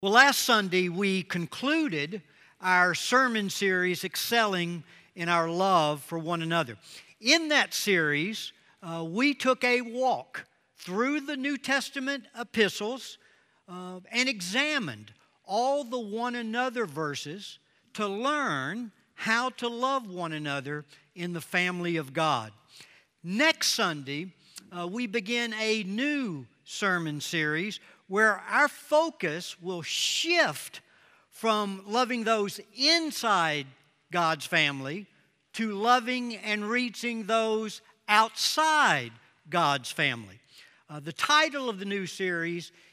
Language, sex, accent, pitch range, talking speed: English, male, American, 170-245 Hz, 115 wpm